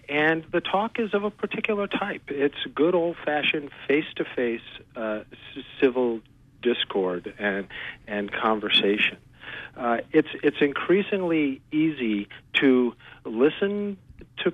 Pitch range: 105-145 Hz